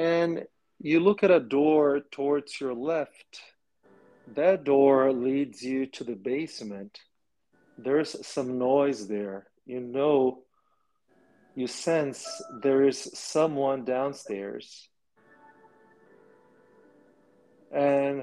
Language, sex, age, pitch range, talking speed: English, male, 40-59, 125-200 Hz, 95 wpm